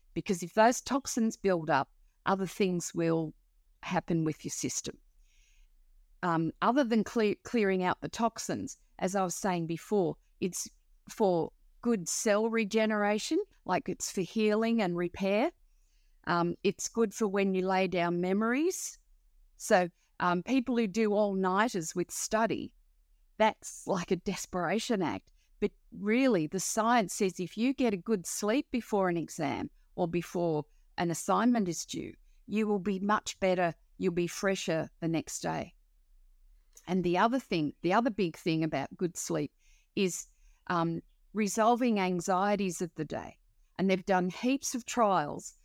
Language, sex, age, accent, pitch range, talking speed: English, female, 50-69, Australian, 170-215 Hz, 150 wpm